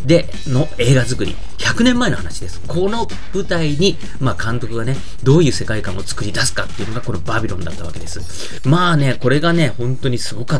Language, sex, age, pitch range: Japanese, male, 30-49, 100-150 Hz